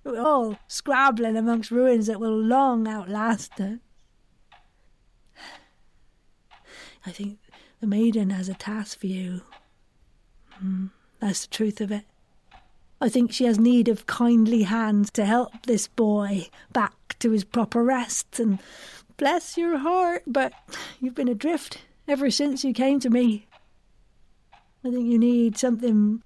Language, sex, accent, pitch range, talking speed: English, female, British, 215-255 Hz, 140 wpm